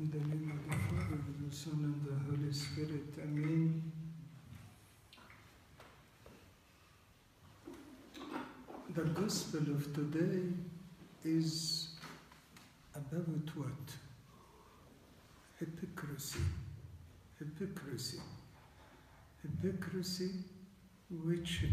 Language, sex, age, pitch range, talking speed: English, male, 60-79, 140-175 Hz, 70 wpm